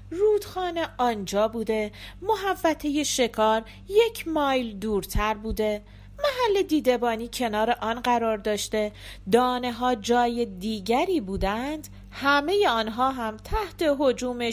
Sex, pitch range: female, 195-285 Hz